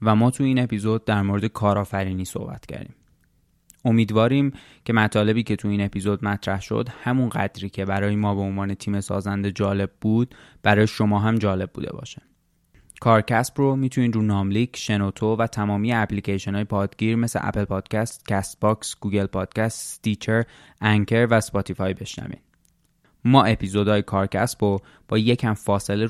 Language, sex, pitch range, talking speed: Persian, male, 100-115 Hz, 150 wpm